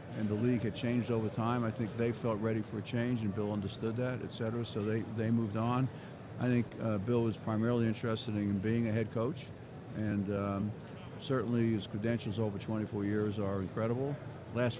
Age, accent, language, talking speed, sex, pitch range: 60-79, American, English, 200 wpm, male, 105-125 Hz